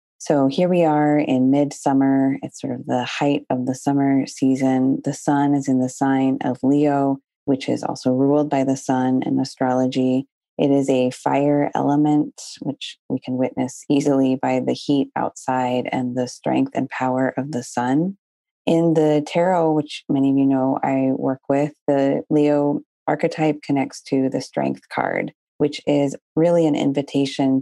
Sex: female